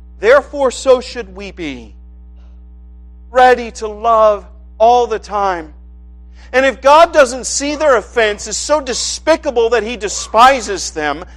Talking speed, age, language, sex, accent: 130 wpm, 50-69, English, male, American